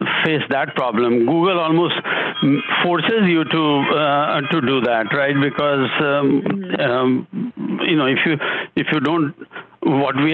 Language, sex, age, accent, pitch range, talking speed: English, male, 60-79, Indian, 130-165 Hz, 145 wpm